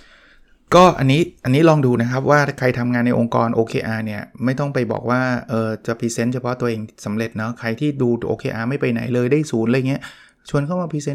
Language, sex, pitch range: Thai, male, 120-150 Hz